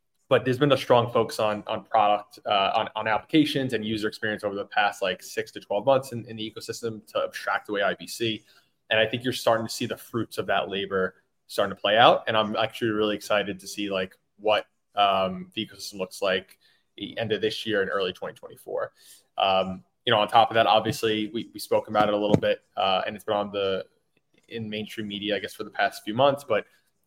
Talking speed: 230 wpm